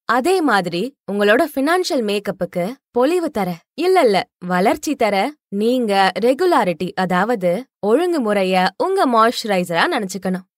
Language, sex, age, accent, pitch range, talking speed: Tamil, female, 20-39, native, 195-280 Hz, 60 wpm